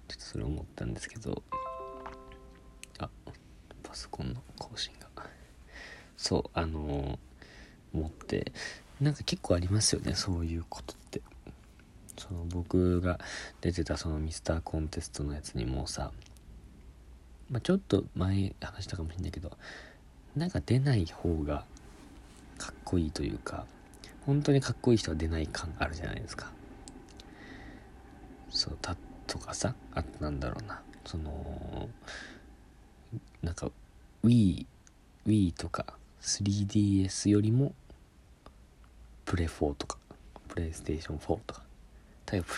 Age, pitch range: 40-59, 75-105 Hz